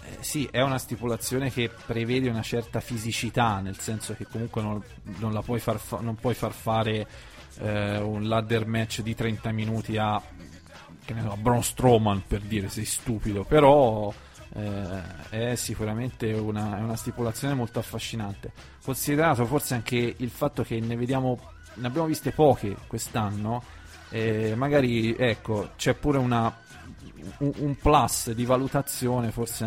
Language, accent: Italian, native